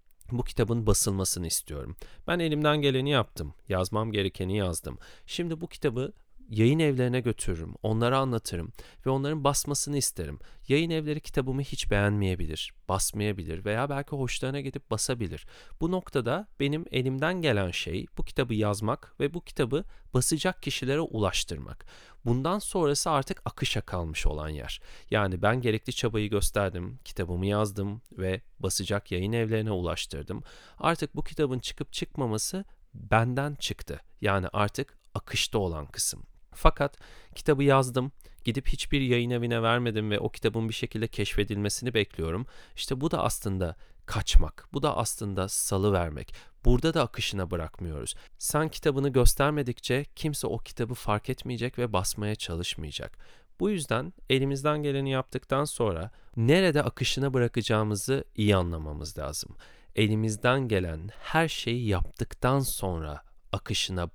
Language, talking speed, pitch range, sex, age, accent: Turkish, 130 wpm, 100-140 Hz, male, 40-59, native